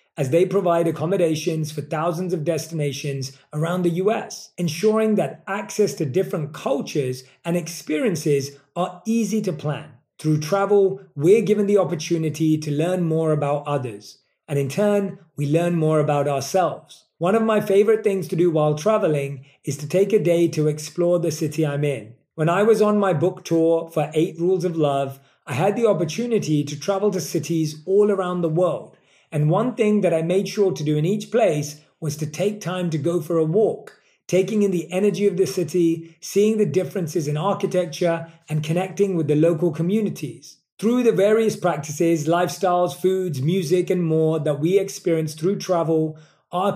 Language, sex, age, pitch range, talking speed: English, male, 30-49, 155-195 Hz, 180 wpm